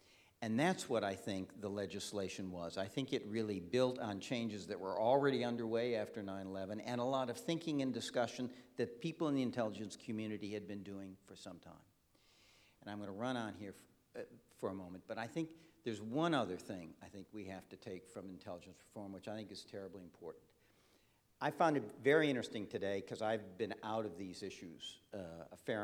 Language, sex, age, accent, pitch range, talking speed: English, male, 60-79, American, 95-120 Hz, 205 wpm